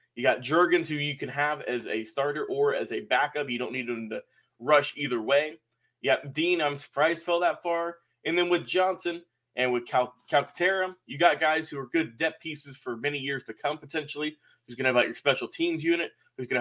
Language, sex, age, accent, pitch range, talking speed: English, male, 20-39, American, 125-165 Hz, 220 wpm